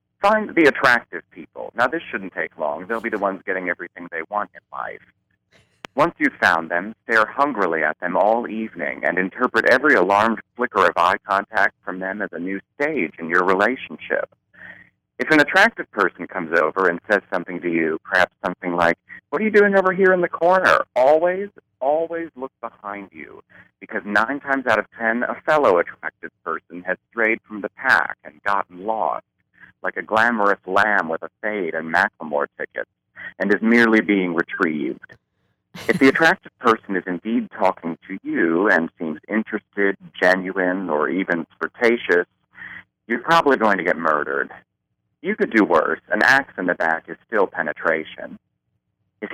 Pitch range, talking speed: 90-125 Hz, 175 wpm